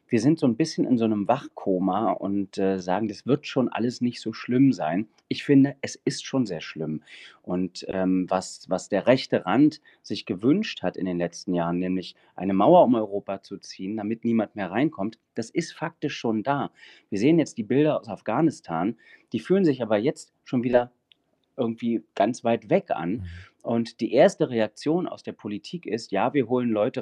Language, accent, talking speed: German, German, 195 wpm